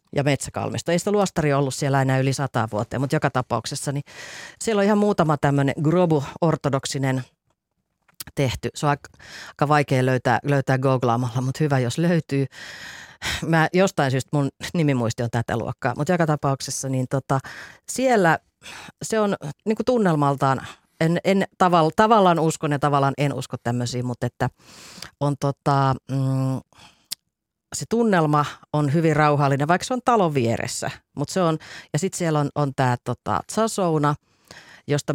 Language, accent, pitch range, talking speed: Finnish, native, 125-155 Hz, 150 wpm